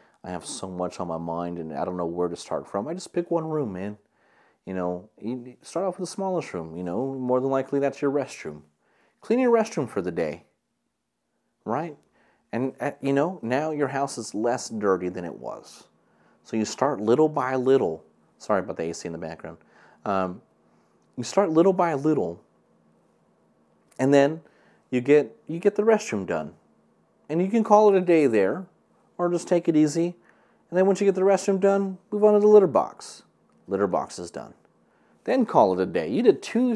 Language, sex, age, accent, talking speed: English, male, 30-49, American, 200 wpm